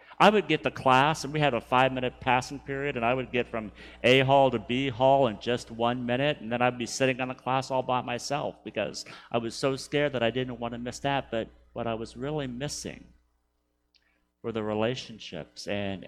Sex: male